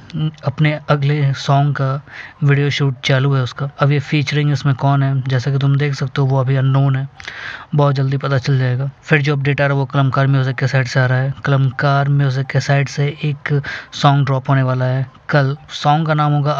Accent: native